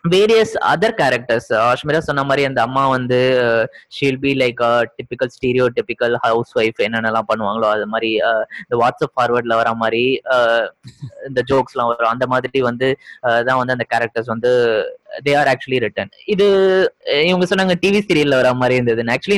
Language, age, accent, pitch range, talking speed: Tamil, 20-39, native, 125-180 Hz, 140 wpm